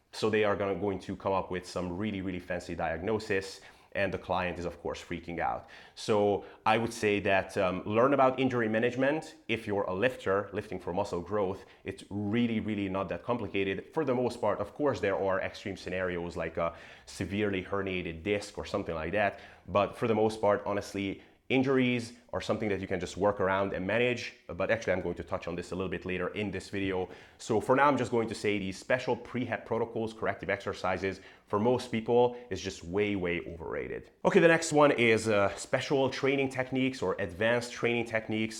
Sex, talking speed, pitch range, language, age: male, 205 wpm, 95-115 Hz, English, 30-49